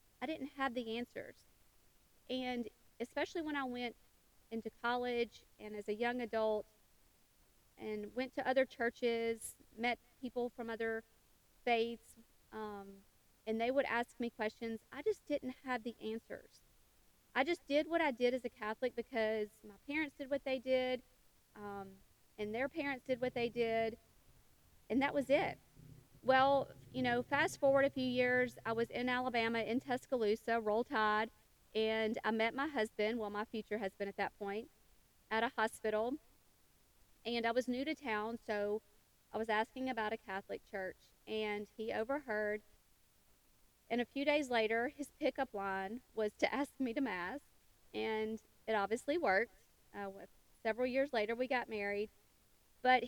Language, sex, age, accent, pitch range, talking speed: English, female, 40-59, American, 220-260 Hz, 160 wpm